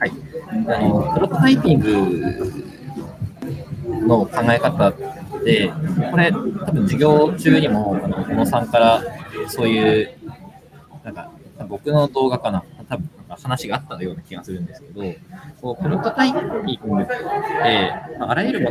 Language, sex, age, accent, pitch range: Japanese, male, 20-39, native, 115-175 Hz